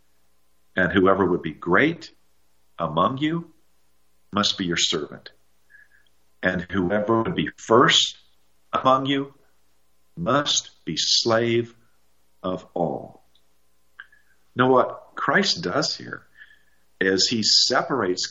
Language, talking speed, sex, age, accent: English, 100 wpm, male, 50-69, American